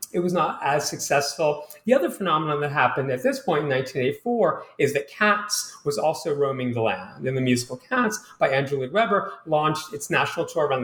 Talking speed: 200 wpm